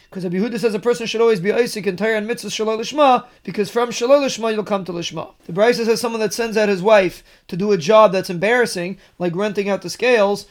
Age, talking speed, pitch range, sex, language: 30-49, 235 wpm, 195-225 Hz, male, English